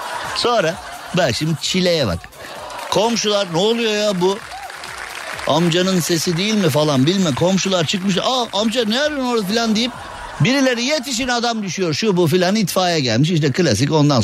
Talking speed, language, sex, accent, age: 155 wpm, Turkish, male, native, 50-69